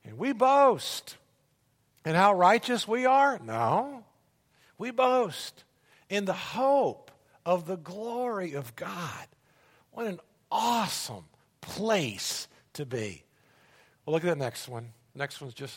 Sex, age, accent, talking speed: male, 50-69, American, 130 wpm